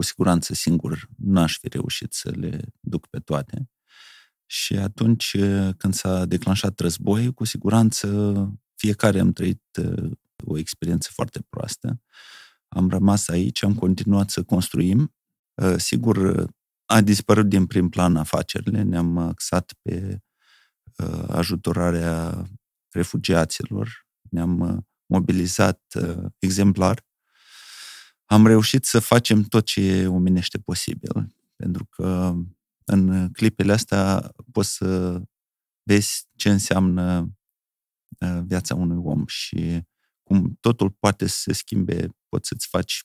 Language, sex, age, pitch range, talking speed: Romanian, male, 30-49, 90-105 Hz, 110 wpm